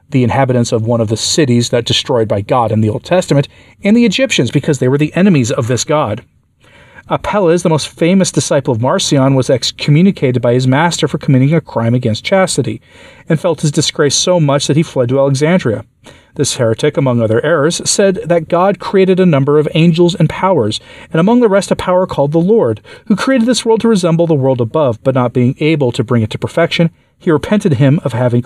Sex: male